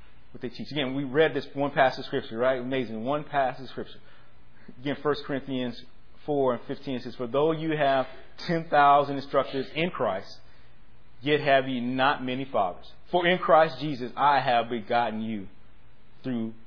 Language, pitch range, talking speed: English, 120-165 Hz, 175 wpm